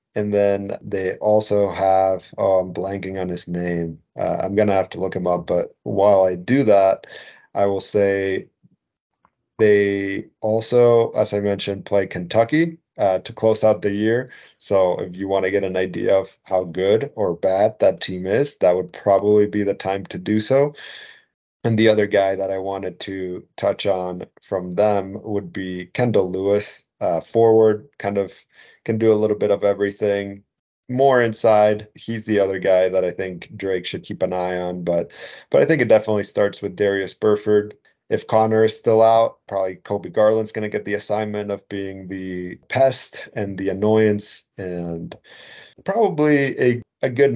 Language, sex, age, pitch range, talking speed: English, male, 30-49, 95-110 Hz, 180 wpm